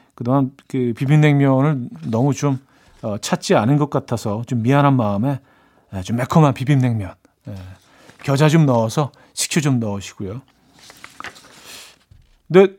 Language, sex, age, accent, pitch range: Korean, male, 40-59, native, 115-160 Hz